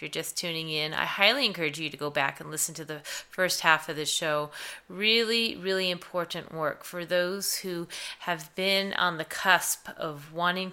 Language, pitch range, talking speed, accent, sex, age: English, 165-195 Hz, 190 wpm, American, female, 30-49